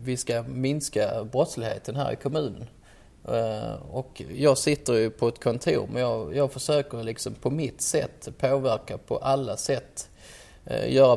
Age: 20-39